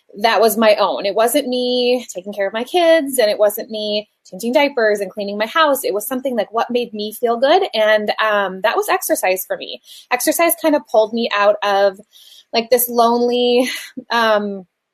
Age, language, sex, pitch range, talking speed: 20-39, English, female, 205-275 Hz, 195 wpm